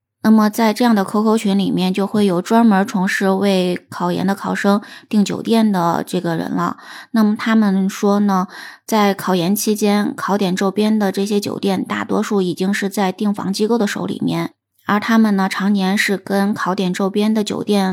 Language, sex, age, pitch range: Chinese, female, 20-39, 190-225 Hz